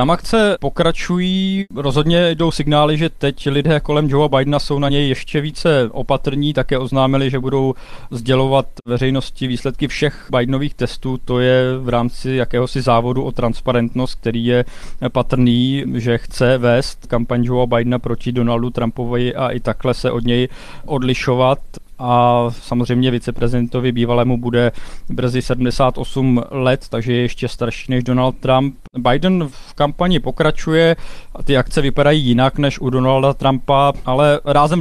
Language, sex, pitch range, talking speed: Czech, male, 125-140 Hz, 145 wpm